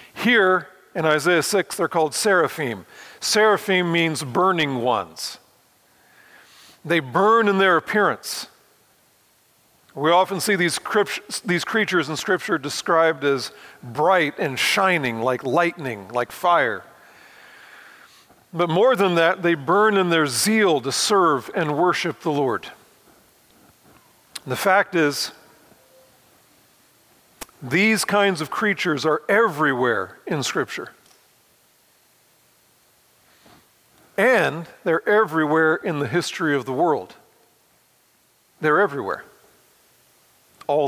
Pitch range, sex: 160-195 Hz, male